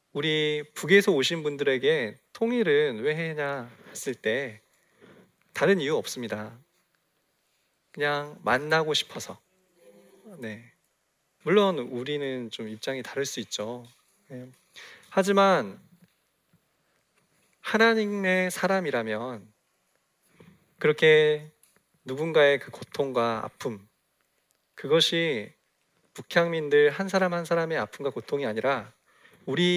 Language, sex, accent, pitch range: Korean, male, native, 130-190 Hz